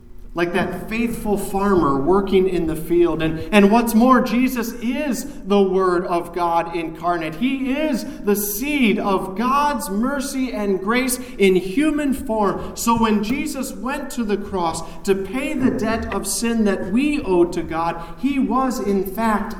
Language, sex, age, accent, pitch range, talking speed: English, male, 40-59, American, 175-230 Hz, 160 wpm